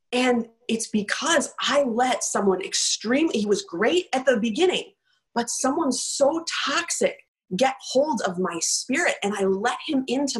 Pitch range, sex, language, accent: 215-300 Hz, female, English, American